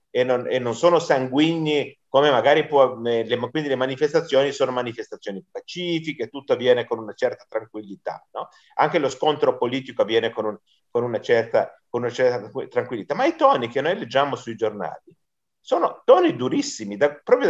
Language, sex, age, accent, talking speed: Italian, male, 40-59, native, 170 wpm